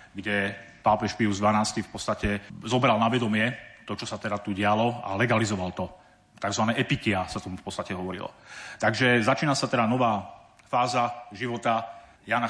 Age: 40-59